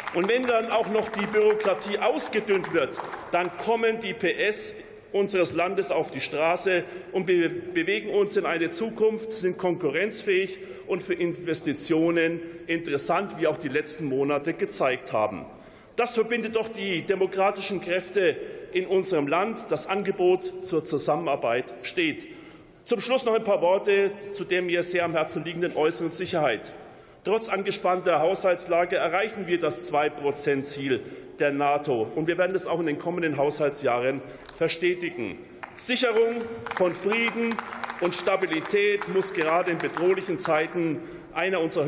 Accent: German